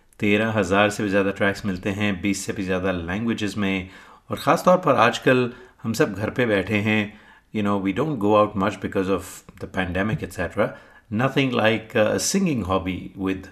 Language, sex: Hindi, male